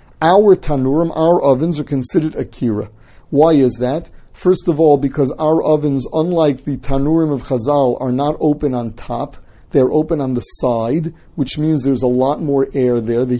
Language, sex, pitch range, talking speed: English, male, 125-155 Hz, 180 wpm